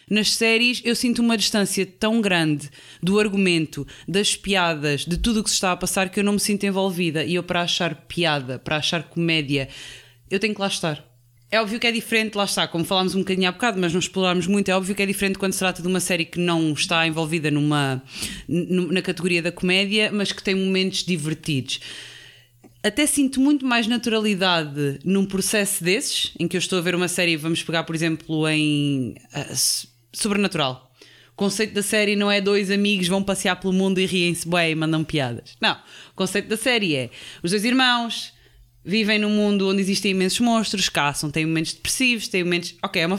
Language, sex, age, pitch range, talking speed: Portuguese, female, 20-39, 165-210 Hz, 200 wpm